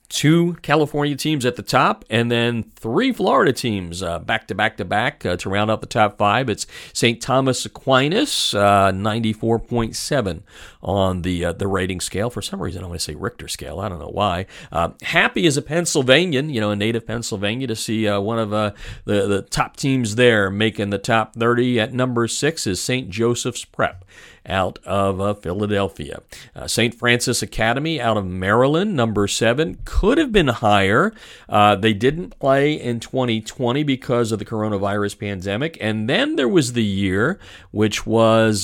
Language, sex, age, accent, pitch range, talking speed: English, male, 50-69, American, 105-130 Hz, 180 wpm